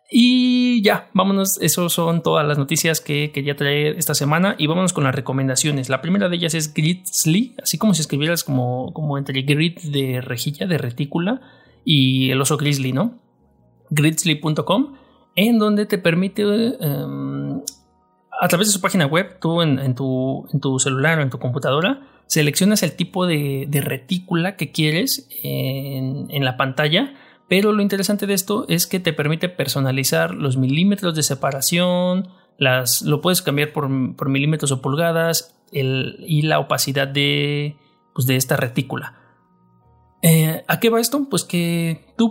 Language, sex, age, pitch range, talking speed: Spanish, male, 30-49, 140-185 Hz, 160 wpm